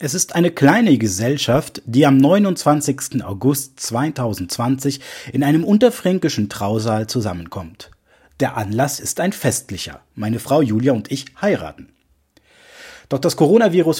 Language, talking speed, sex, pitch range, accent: German, 125 wpm, male, 110-145 Hz, German